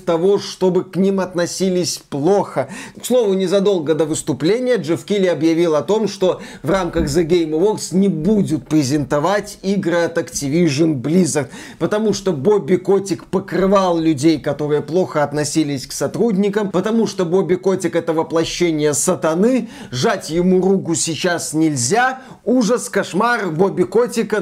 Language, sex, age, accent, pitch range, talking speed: Russian, male, 20-39, native, 160-210 Hz, 140 wpm